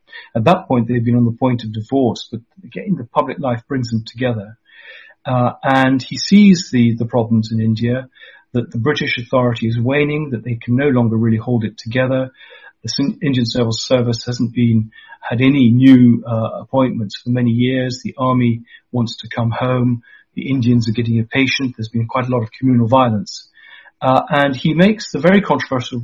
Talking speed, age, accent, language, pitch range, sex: 190 wpm, 40-59, British, English, 115-135 Hz, male